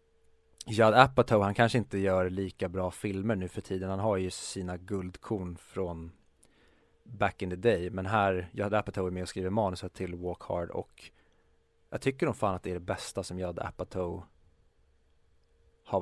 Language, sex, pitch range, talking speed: Swedish, male, 90-110 Hz, 180 wpm